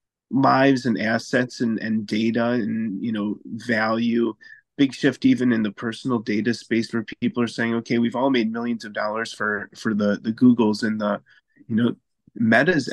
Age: 30-49